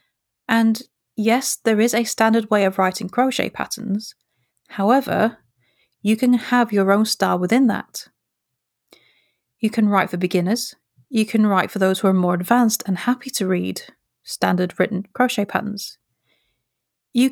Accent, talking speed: British, 150 wpm